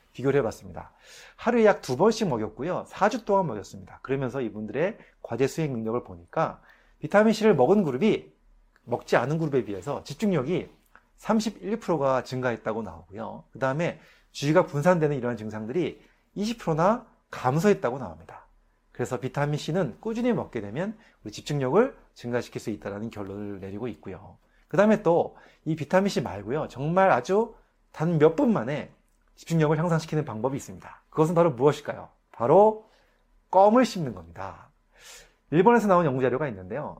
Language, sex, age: Korean, male, 30-49